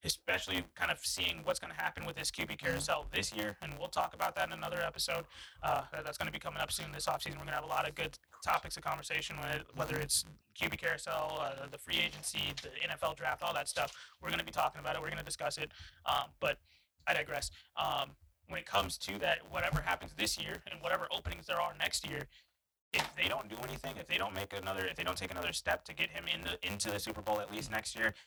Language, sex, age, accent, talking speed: English, male, 20-39, American, 250 wpm